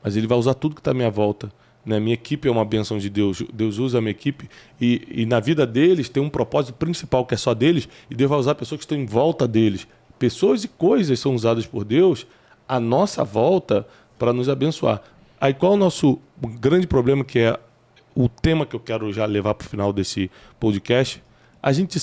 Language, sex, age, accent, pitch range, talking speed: Portuguese, male, 20-39, Brazilian, 110-145 Hz, 225 wpm